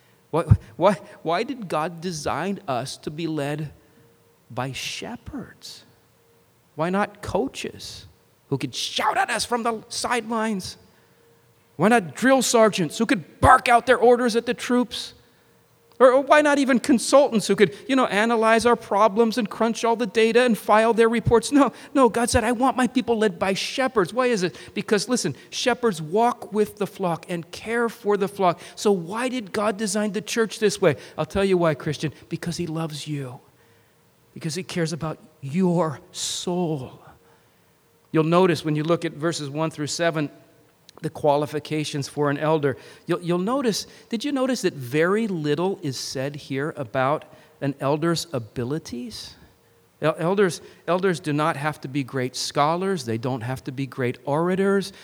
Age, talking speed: 40-59, 170 wpm